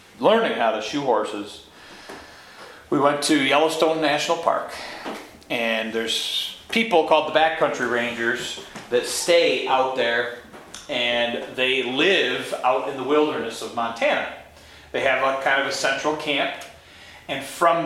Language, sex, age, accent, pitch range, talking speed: English, male, 40-59, American, 110-150 Hz, 140 wpm